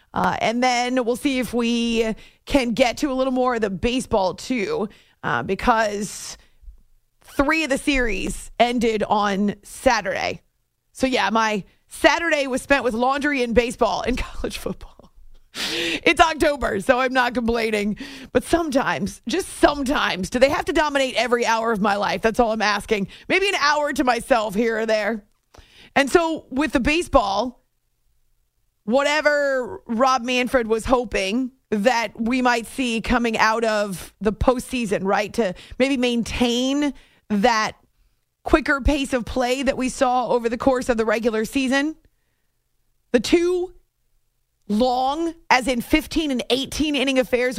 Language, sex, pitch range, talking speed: English, female, 220-275 Hz, 150 wpm